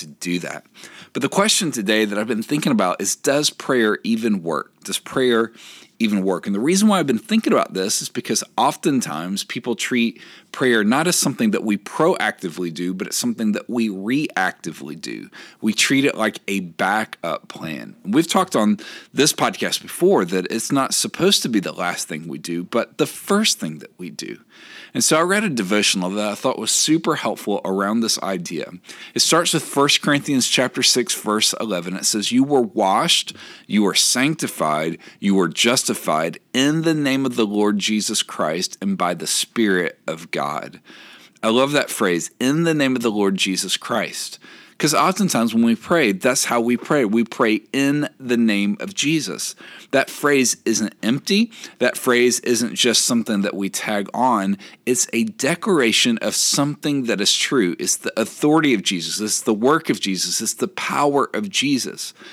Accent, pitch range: American, 105-150 Hz